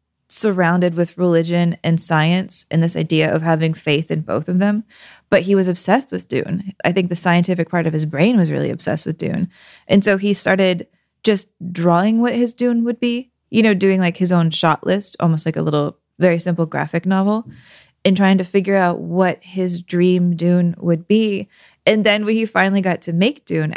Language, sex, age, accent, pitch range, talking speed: English, female, 20-39, American, 170-200 Hz, 205 wpm